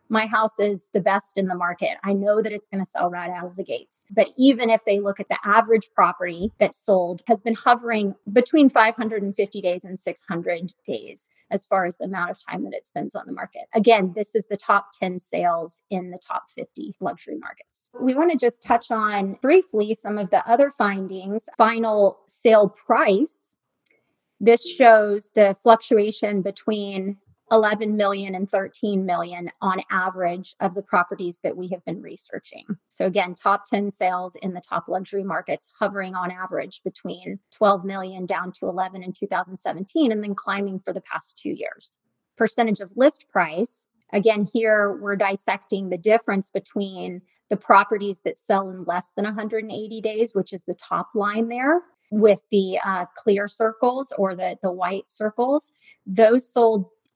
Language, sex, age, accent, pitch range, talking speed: English, female, 30-49, American, 190-225 Hz, 175 wpm